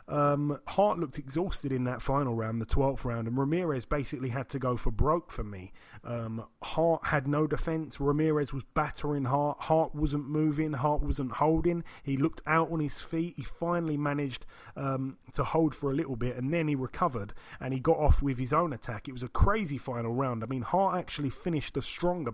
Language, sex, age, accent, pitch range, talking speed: English, male, 30-49, British, 125-160 Hz, 205 wpm